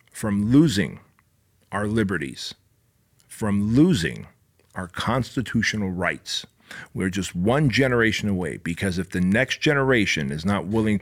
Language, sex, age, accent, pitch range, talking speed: English, male, 40-59, American, 95-120 Hz, 120 wpm